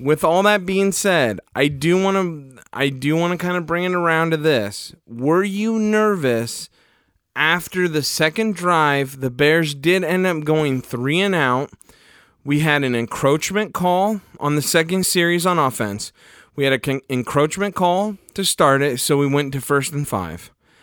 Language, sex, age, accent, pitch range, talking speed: English, male, 30-49, American, 135-180 Hz, 180 wpm